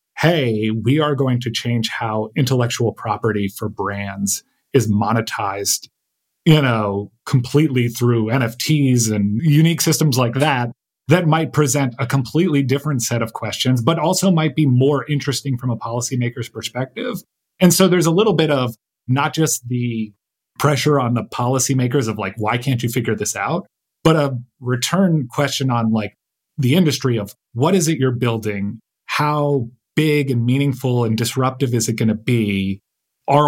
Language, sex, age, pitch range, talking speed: English, male, 30-49, 115-145 Hz, 160 wpm